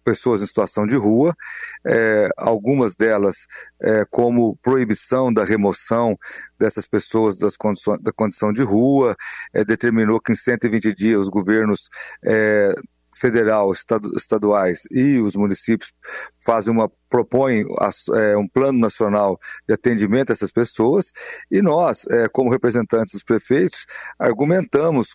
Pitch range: 105-135 Hz